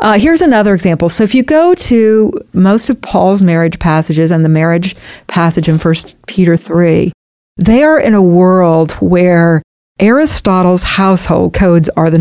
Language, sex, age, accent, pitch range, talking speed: English, female, 50-69, American, 170-220 Hz, 160 wpm